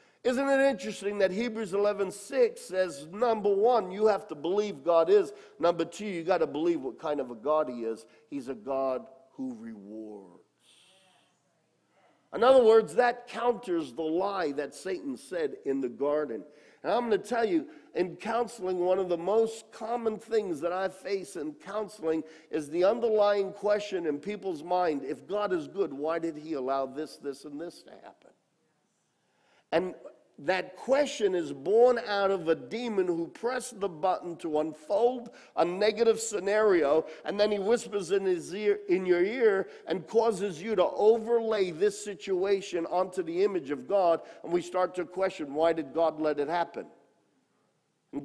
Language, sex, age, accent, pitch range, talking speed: English, male, 50-69, American, 165-235 Hz, 170 wpm